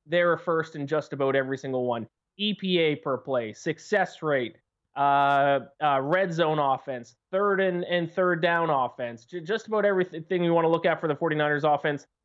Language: English